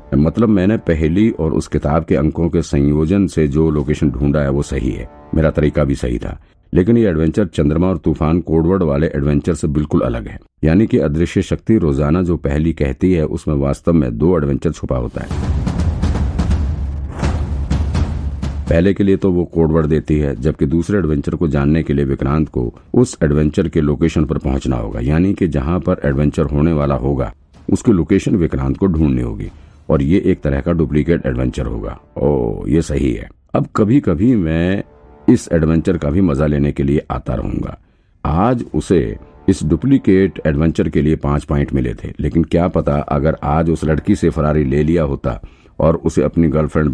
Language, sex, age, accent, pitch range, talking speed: Hindi, male, 50-69, native, 70-85 Hz, 165 wpm